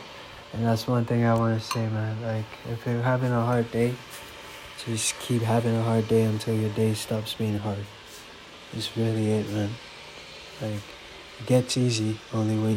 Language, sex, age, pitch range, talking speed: English, male, 20-39, 110-120 Hz, 180 wpm